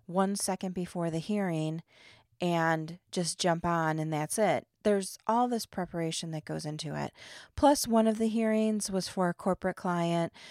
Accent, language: American, English